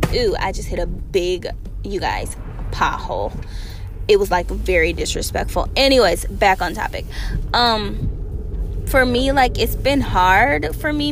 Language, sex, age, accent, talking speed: English, female, 10-29, American, 145 wpm